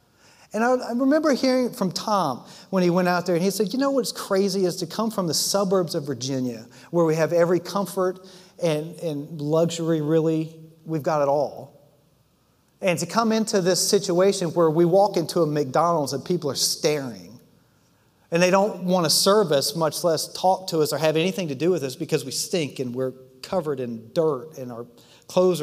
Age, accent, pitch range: 40-59, American, 130-180 Hz